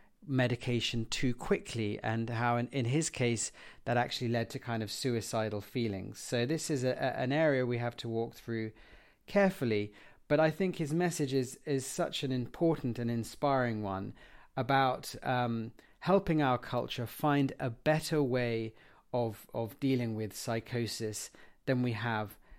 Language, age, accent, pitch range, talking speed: English, 40-59, British, 115-140 Hz, 155 wpm